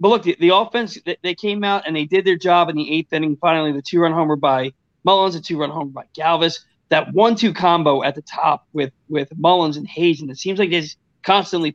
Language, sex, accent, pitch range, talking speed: English, male, American, 155-185 Hz, 230 wpm